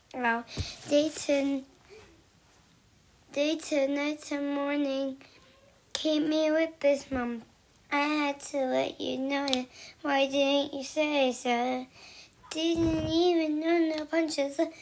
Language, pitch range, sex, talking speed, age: English, 255-315 Hz, male, 110 wpm, 20-39